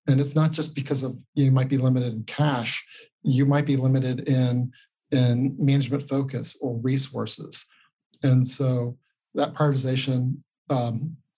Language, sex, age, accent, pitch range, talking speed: English, male, 40-59, American, 125-140 Hz, 140 wpm